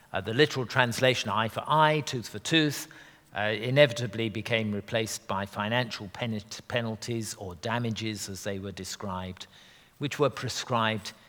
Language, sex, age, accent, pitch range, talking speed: English, male, 50-69, British, 105-130 Hz, 110 wpm